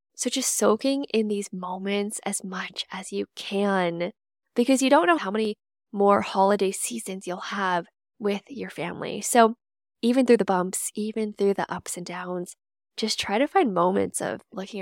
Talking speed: 175 wpm